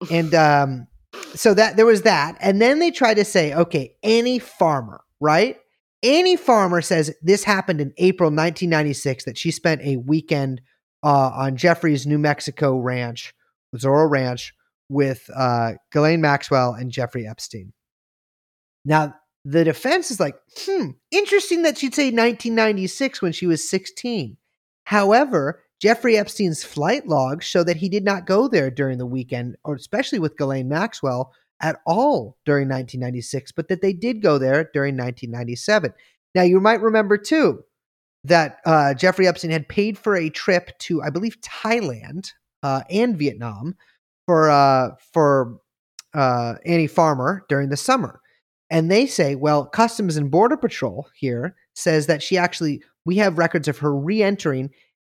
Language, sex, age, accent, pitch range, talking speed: English, male, 30-49, American, 140-205 Hz, 155 wpm